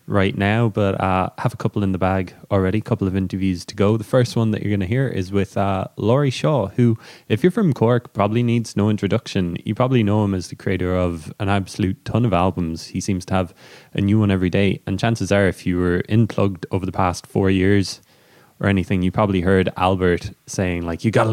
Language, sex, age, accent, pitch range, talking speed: English, male, 20-39, Irish, 95-110 Hz, 240 wpm